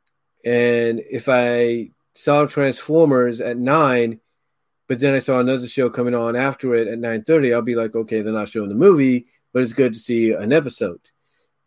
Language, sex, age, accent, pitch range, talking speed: English, male, 40-59, American, 115-135 Hz, 180 wpm